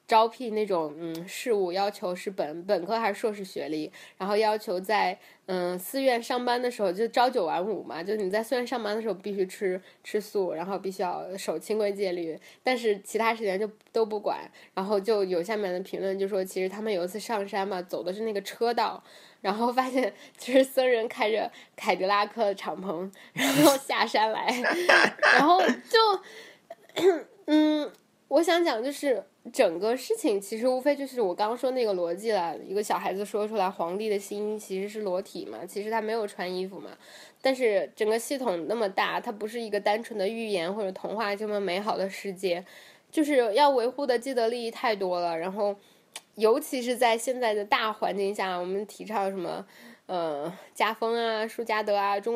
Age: 10-29